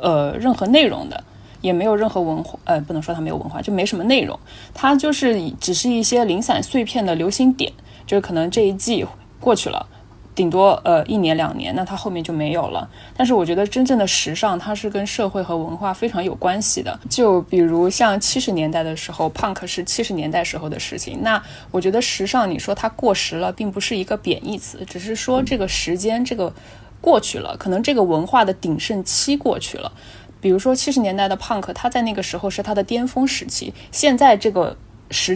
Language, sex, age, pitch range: Chinese, female, 20-39, 170-230 Hz